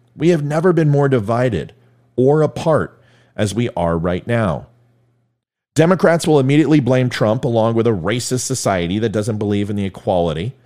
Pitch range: 105-145 Hz